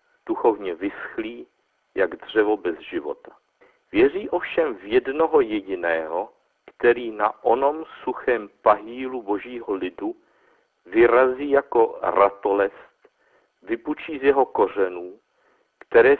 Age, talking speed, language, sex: 50-69, 95 wpm, Czech, male